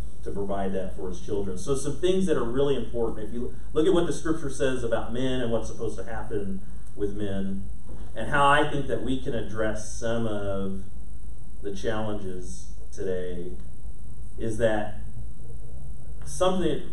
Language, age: English, 40-59